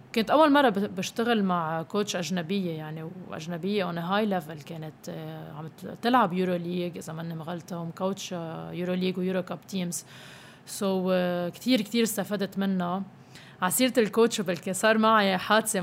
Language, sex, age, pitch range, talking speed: Arabic, female, 20-39, 180-225 Hz, 135 wpm